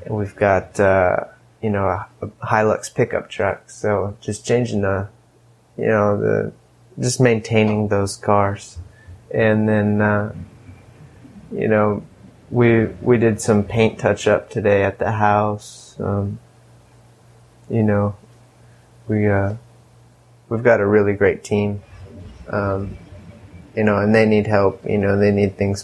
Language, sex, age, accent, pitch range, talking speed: English, male, 20-39, American, 100-115 Hz, 140 wpm